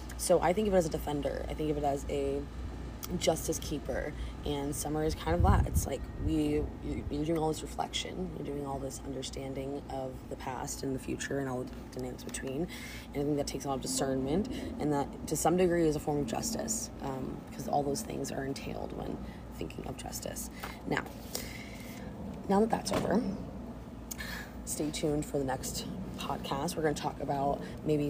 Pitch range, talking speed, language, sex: 135-155 Hz, 200 wpm, English, female